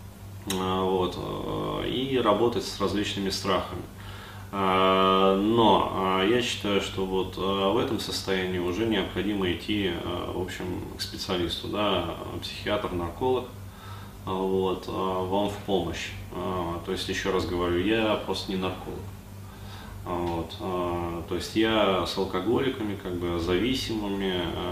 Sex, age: male, 20-39